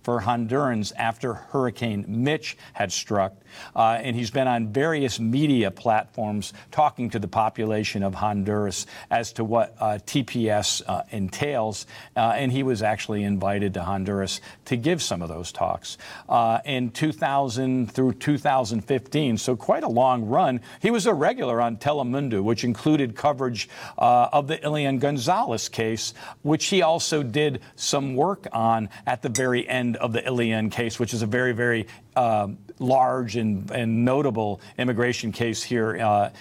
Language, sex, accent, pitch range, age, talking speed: English, male, American, 110-135 Hz, 50-69, 160 wpm